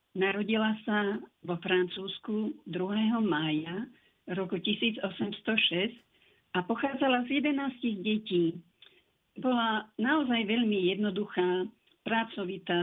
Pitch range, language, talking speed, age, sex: 185-230 Hz, Slovak, 85 wpm, 50-69, female